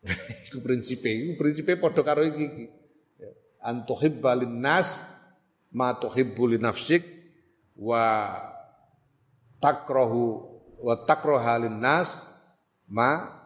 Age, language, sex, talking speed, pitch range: 40-59, Indonesian, male, 75 wpm, 105-150 Hz